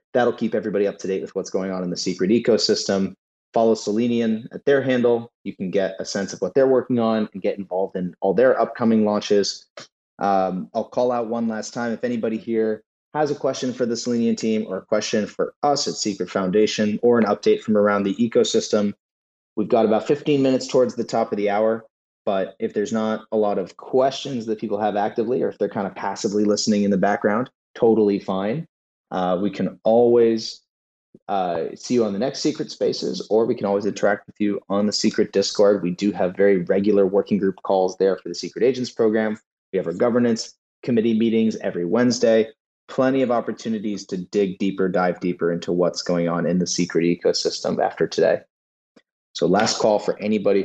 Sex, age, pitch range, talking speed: male, 30-49, 95-115 Hz, 205 wpm